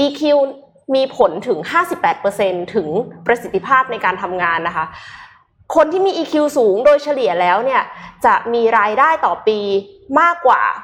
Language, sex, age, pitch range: Thai, female, 20-39, 200-305 Hz